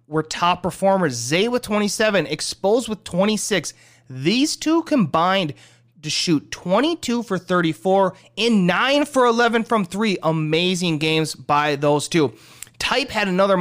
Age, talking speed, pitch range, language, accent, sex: 30-49, 135 wpm, 150-200 Hz, English, American, male